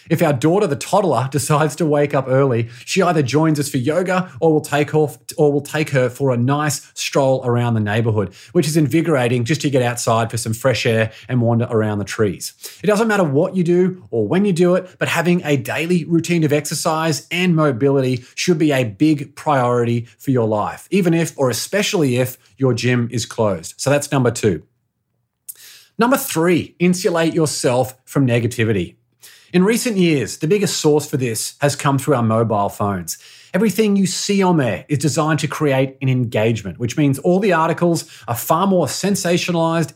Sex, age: male, 30-49